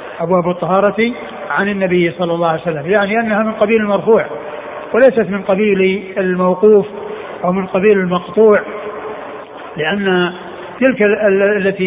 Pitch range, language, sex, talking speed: 195-220 Hz, Arabic, male, 125 wpm